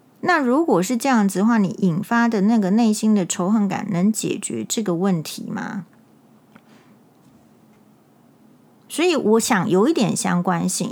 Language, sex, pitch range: Chinese, female, 185-230 Hz